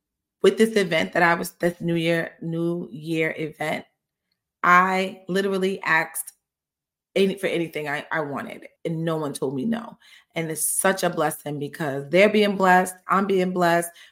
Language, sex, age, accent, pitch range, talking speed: English, female, 30-49, American, 170-195 Hz, 160 wpm